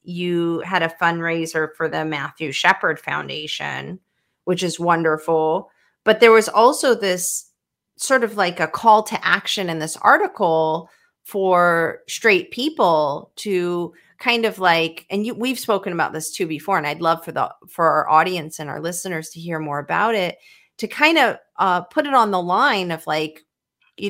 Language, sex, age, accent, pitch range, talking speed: English, female, 30-49, American, 165-210 Hz, 175 wpm